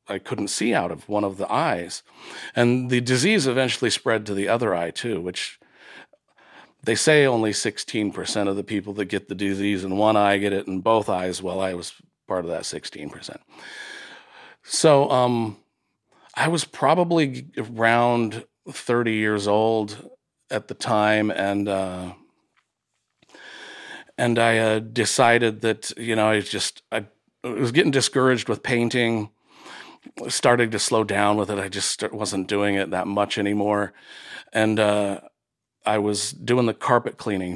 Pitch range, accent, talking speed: 100-115 Hz, American, 155 wpm